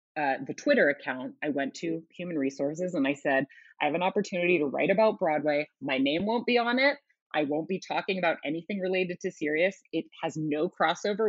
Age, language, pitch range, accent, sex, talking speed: 30-49, English, 150-220 Hz, American, female, 205 wpm